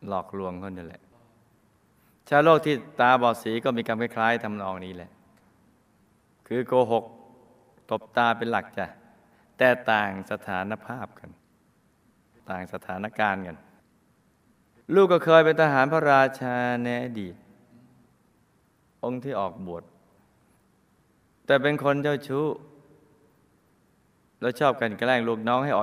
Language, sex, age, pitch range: Thai, male, 20-39, 105-130 Hz